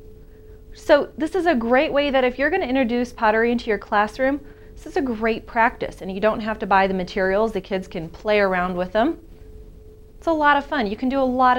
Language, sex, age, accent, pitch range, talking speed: English, female, 30-49, American, 185-255 Hz, 240 wpm